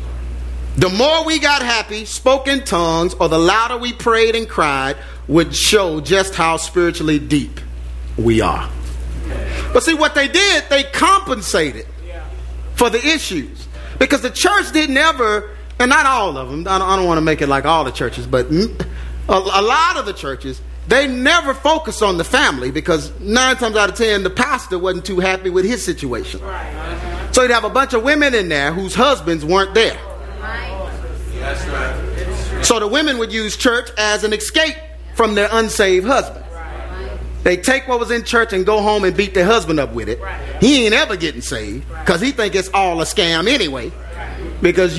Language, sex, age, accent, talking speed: English, male, 40-59, American, 185 wpm